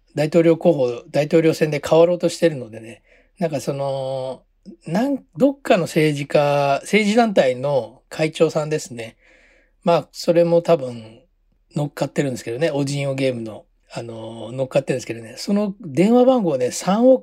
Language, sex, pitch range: Japanese, male, 135-190 Hz